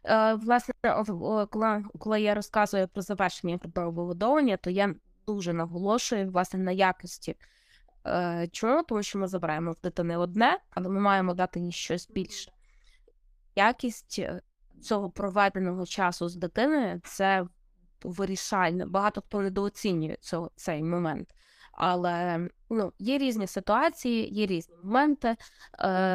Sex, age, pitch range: female, 20-39, 180-225 Hz